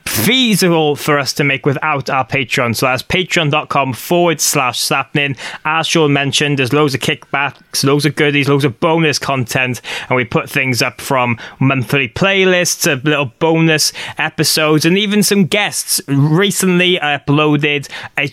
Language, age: English, 20-39